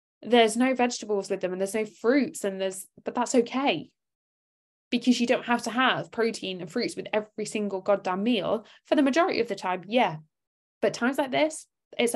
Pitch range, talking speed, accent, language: 190-265 Hz, 195 wpm, British, English